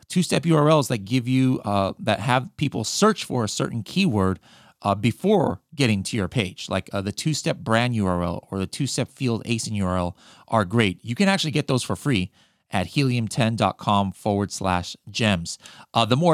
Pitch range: 105-140 Hz